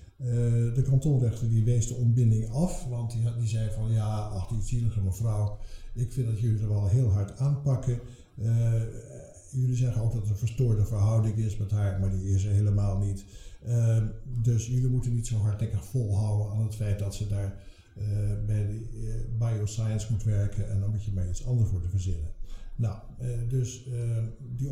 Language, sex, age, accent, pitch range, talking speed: English, male, 60-79, Dutch, 100-125 Hz, 195 wpm